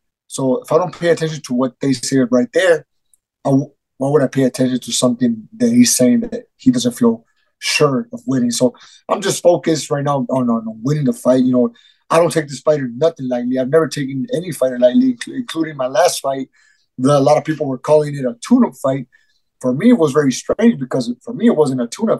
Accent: American